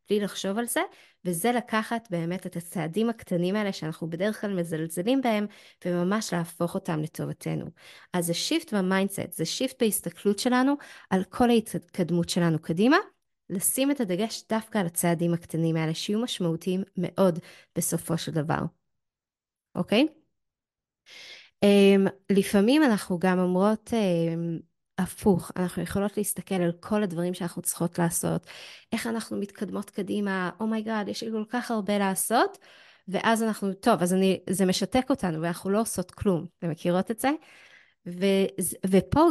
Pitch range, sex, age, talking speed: 175-220 Hz, female, 20-39, 135 wpm